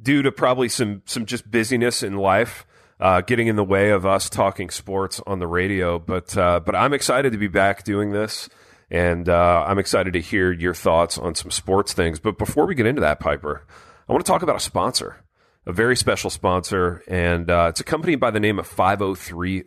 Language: English